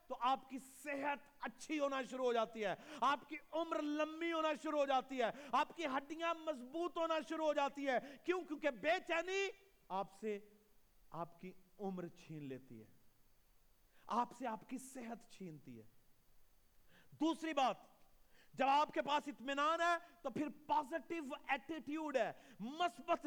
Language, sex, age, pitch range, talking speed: Urdu, male, 40-59, 240-315 Hz, 155 wpm